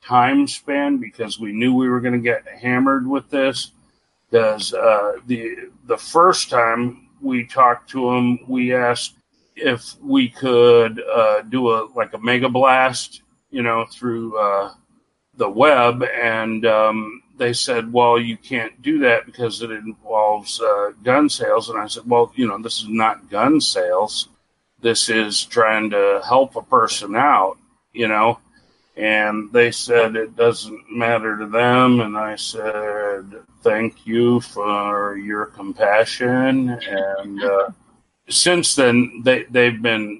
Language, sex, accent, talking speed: English, male, American, 150 wpm